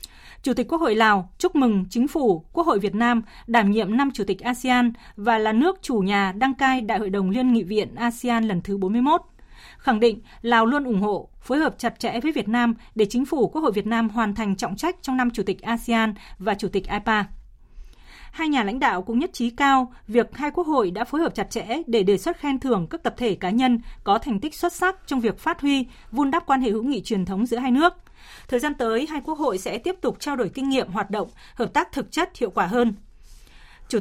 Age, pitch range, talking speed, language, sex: 20-39, 215-265 Hz, 245 wpm, Vietnamese, female